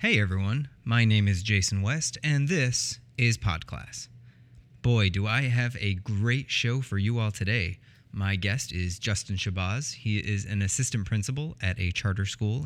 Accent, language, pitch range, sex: American, English, 100-125 Hz, male